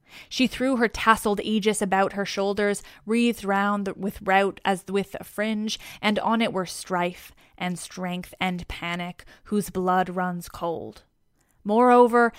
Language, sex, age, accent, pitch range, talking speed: English, female, 20-39, American, 185-215 Hz, 145 wpm